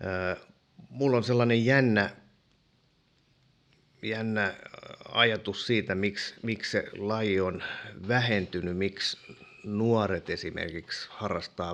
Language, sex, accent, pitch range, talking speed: Finnish, male, native, 95-115 Hz, 85 wpm